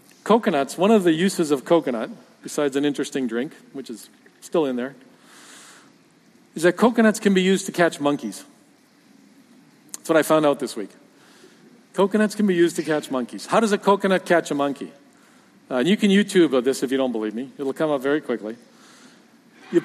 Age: 50-69